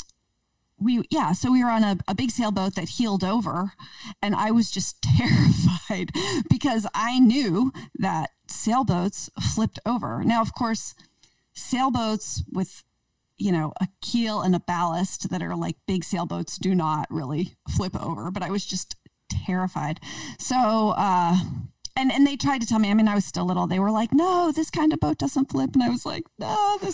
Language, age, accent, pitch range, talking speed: English, 40-59, American, 175-240 Hz, 185 wpm